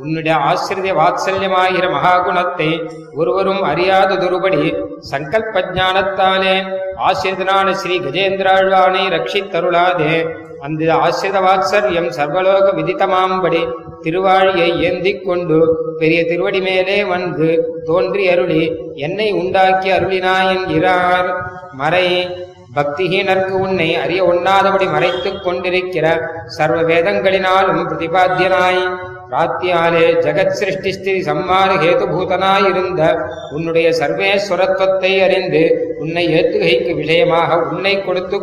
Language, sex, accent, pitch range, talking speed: Tamil, male, native, 165-190 Hz, 75 wpm